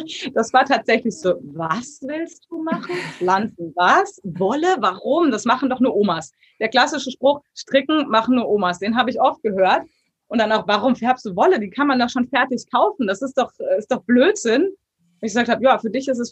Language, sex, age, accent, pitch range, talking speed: German, female, 20-39, German, 195-260 Hz, 210 wpm